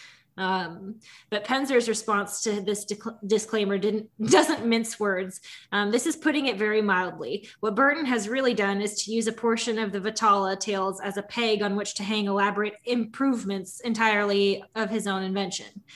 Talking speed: 175 wpm